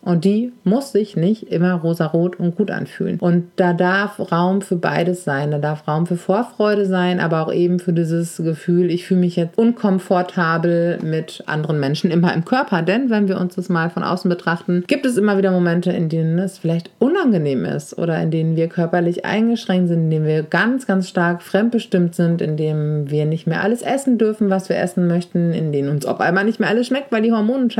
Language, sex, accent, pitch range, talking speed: German, female, German, 170-200 Hz, 215 wpm